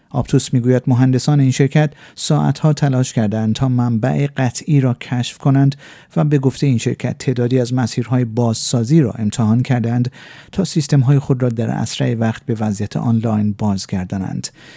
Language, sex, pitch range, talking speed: Persian, male, 120-145 Hz, 150 wpm